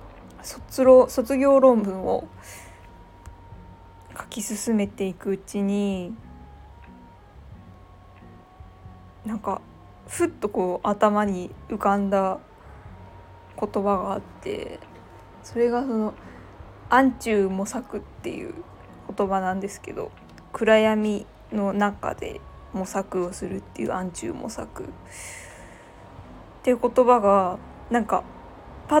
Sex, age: female, 20-39